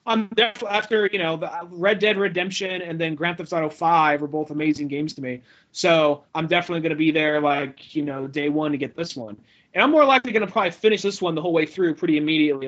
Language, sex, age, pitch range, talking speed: English, male, 30-49, 155-185 Hz, 250 wpm